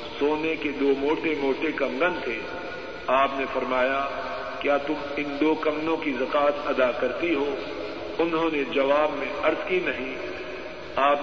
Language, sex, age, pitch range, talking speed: Urdu, male, 50-69, 145-185 Hz, 150 wpm